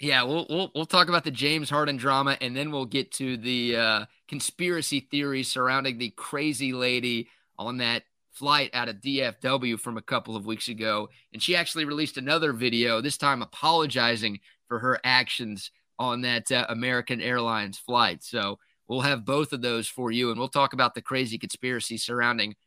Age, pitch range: 30-49, 120-150 Hz